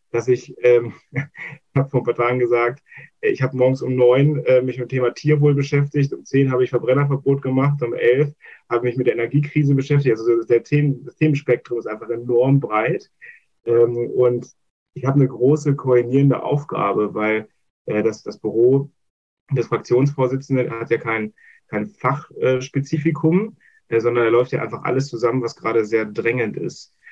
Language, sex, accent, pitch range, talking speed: German, male, German, 115-140 Hz, 170 wpm